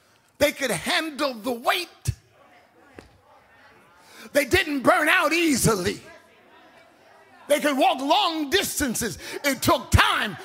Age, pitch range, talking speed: 50-69, 280-365 Hz, 105 wpm